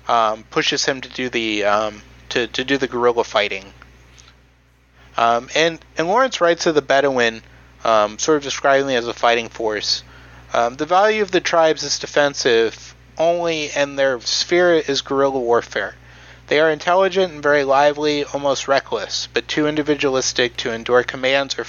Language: English